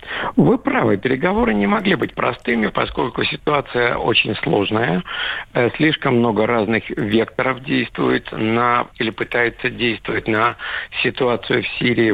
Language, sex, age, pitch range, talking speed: Russian, male, 50-69, 105-130 Hz, 120 wpm